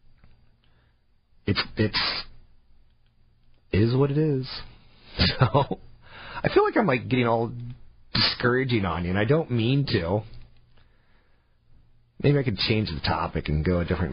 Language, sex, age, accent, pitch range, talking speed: English, male, 40-59, American, 80-115 Hz, 140 wpm